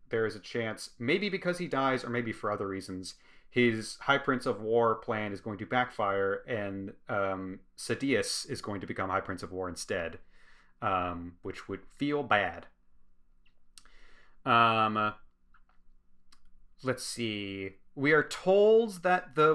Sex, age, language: male, 30-49, English